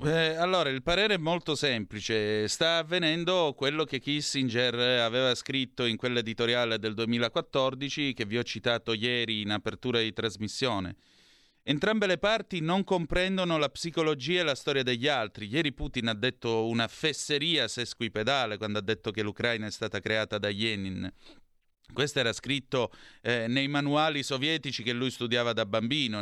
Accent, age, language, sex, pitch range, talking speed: native, 30-49, Italian, male, 110-140 Hz, 155 wpm